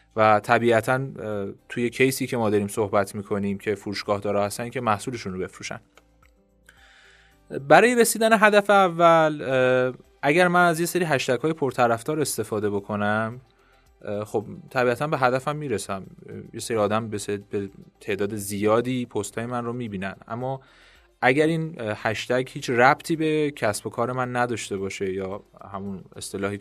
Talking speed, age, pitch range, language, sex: 140 wpm, 30-49, 100-130 Hz, Persian, male